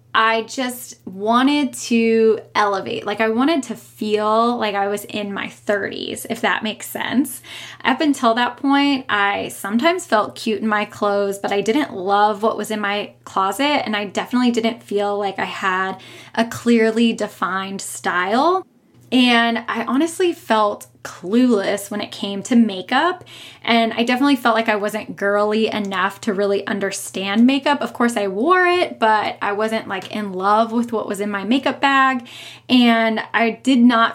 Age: 10-29